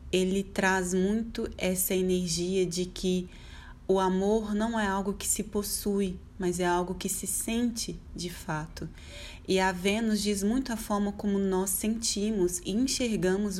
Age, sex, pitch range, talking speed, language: 20-39, female, 175-200 Hz, 155 wpm, Portuguese